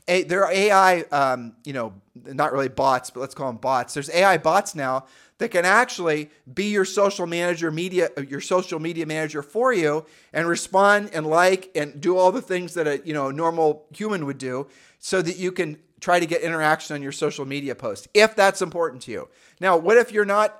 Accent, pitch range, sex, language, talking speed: American, 135-175 Hz, male, English, 215 wpm